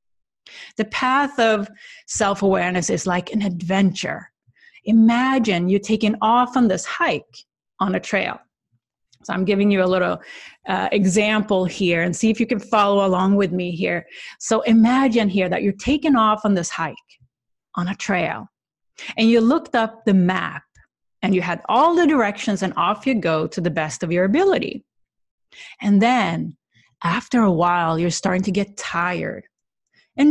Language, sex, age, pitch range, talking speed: English, female, 30-49, 175-230 Hz, 165 wpm